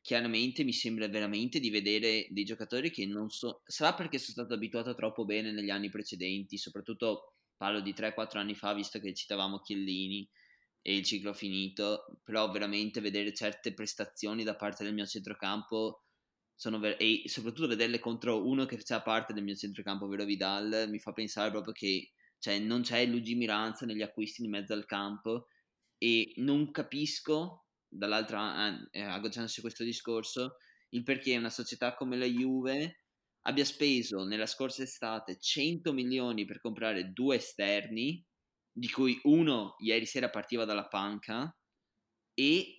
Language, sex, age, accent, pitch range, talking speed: Italian, male, 20-39, native, 105-130 Hz, 155 wpm